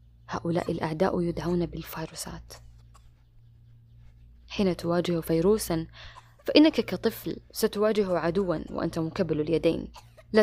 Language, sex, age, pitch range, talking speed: Arabic, female, 20-39, 115-180 Hz, 85 wpm